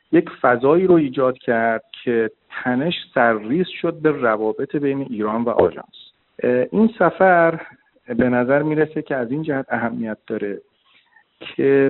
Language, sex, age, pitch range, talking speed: Persian, male, 50-69, 110-145 Hz, 135 wpm